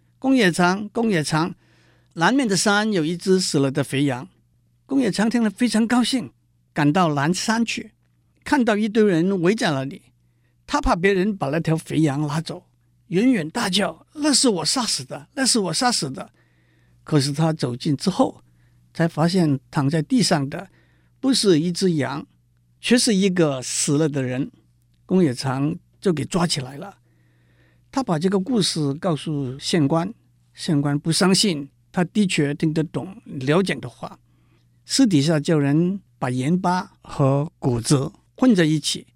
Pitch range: 130-190 Hz